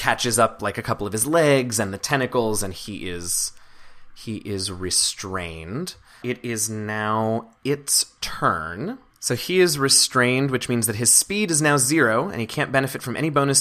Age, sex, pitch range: 20-39, male, 100-125 Hz